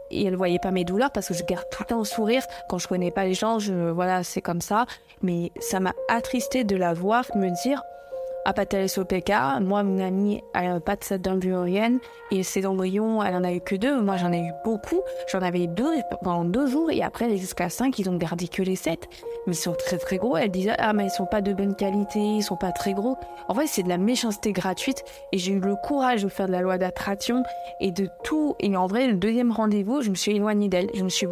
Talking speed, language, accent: 260 wpm, French, French